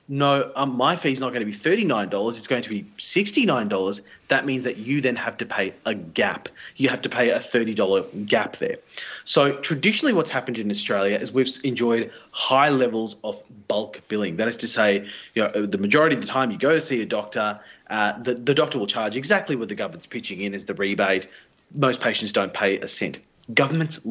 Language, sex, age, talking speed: English, male, 30-49, 225 wpm